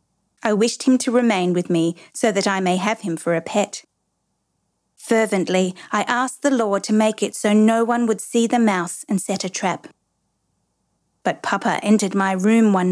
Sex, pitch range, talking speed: female, 185-230 Hz, 190 wpm